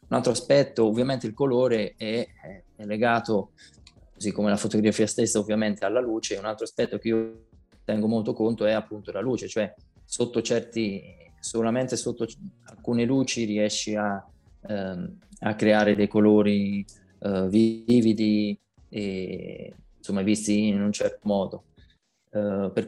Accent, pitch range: Italian, 105-120 Hz